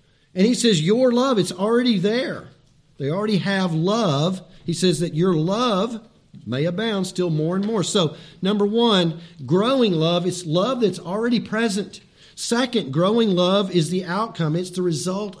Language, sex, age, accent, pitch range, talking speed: English, male, 50-69, American, 160-195 Hz, 165 wpm